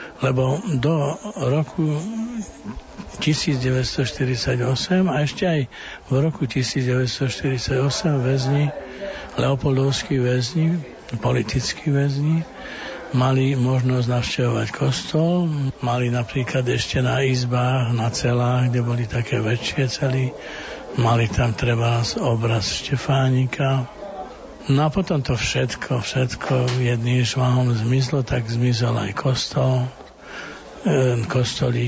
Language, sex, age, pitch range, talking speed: Slovak, male, 60-79, 125-140 Hz, 95 wpm